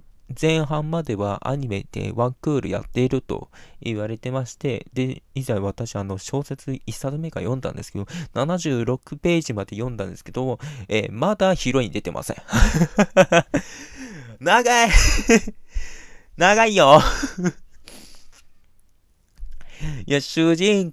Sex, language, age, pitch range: male, Japanese, 20-39, 105-160 Hz